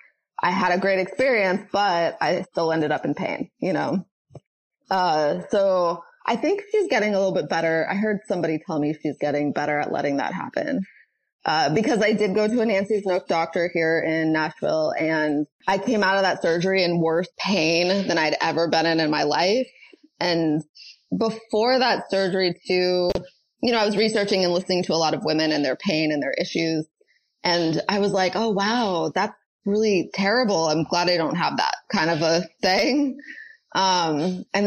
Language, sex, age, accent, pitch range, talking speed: English, female, 20-39, American, 160-200 Hz, 190 wpm